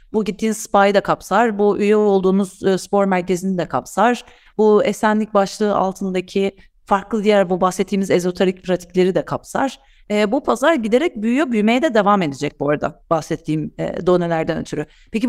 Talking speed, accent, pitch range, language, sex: 155 wpm, native, 185-235 Hz, Turkish, female